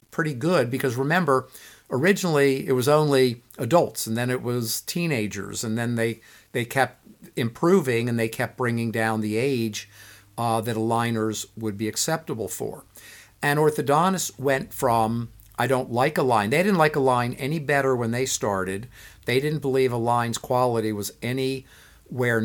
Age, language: 50-69, English